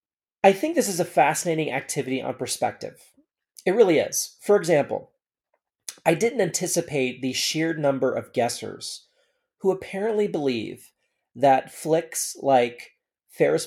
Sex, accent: male, American